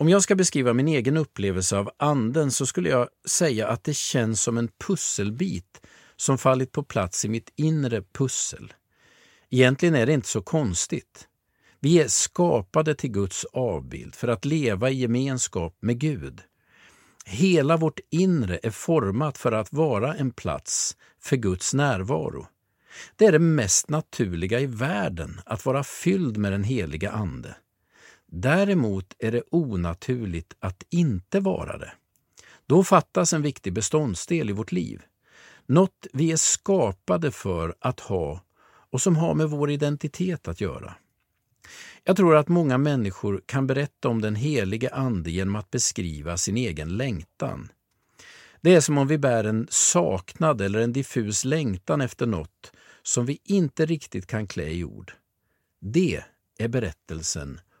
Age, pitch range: 50-69, 100-155 Hz